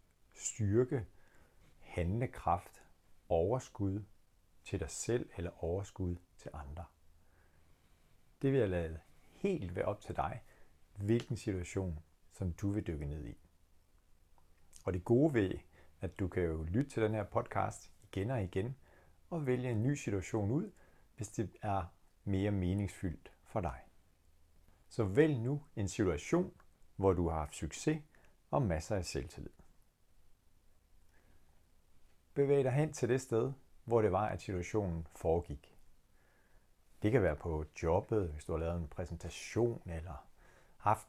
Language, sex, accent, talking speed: Danish, male, native, 140 wpm